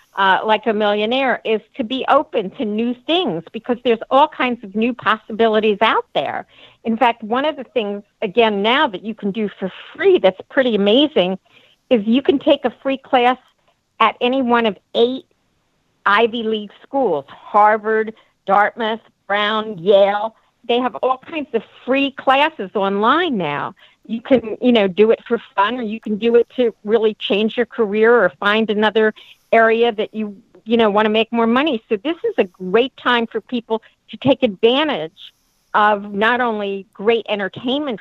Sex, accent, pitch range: female, American, 205-245 Hz